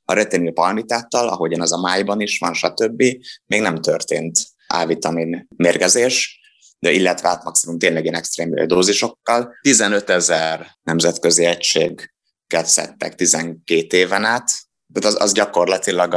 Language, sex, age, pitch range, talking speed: Hungarian, male, 30-49, 85-115 Hz, 125 wpm